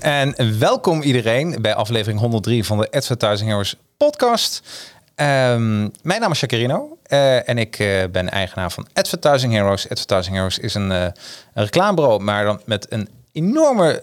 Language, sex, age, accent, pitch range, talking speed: Dutch, male, 40-59, Dutch, 100-140 Hz, 160 wpm